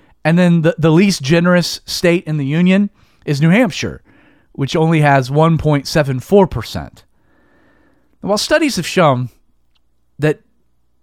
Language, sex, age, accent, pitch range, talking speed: English, male, 30-49, American, 135-195 Hz, 120 wpm